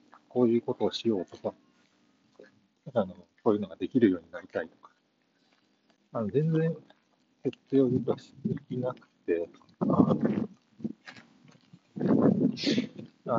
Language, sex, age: Japanese, male, 40-59